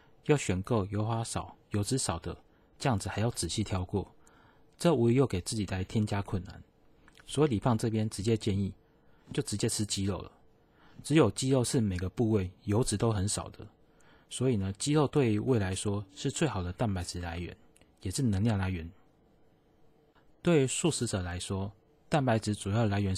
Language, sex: Chinese, male